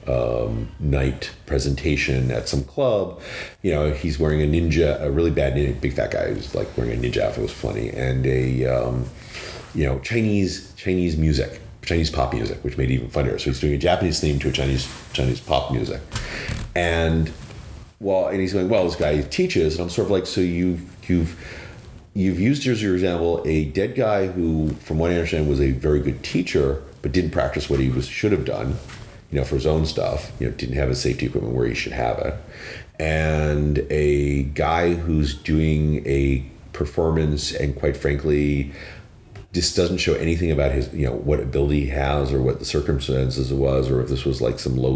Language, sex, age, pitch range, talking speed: English, male, 40-59, 70-85 Hz, 205 wpm